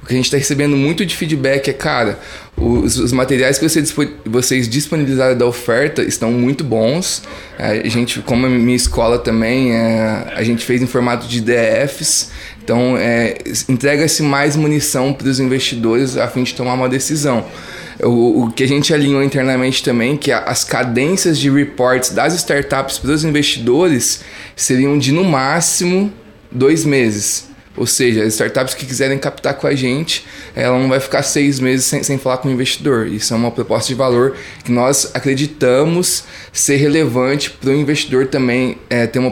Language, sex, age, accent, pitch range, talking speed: Portuguese, male, 20-39, Brazilian, 120-145 Hz, 180 wpm